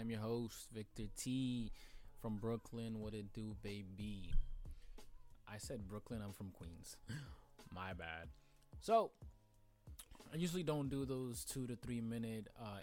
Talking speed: 140 wpm